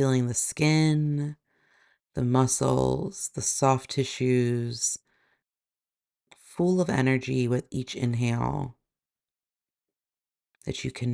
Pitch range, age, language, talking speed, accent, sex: 120-140 Hz, 40-59, English, 90 wpm, American, female